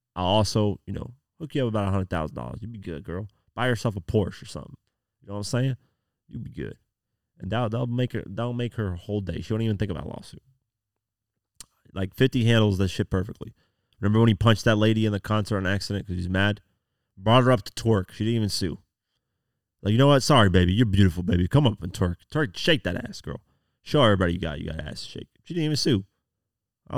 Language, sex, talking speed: English, male, 240 wpm